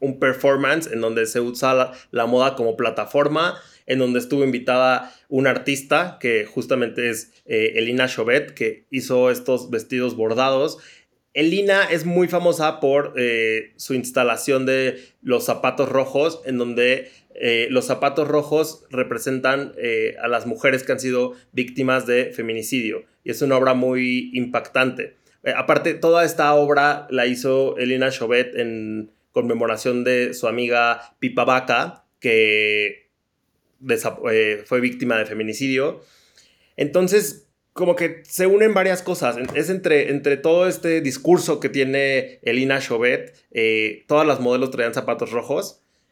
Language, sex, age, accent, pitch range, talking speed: Spanish, male, 30-49, Mexican, 125-145 Hz, 140 wpm